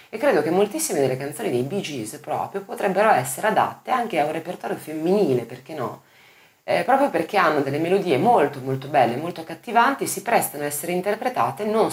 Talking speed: 185 wpm